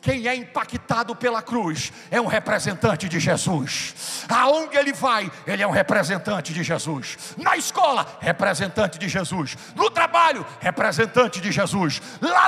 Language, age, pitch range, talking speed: Portuguese, 60-79, 200-295 Hz, 145 wpm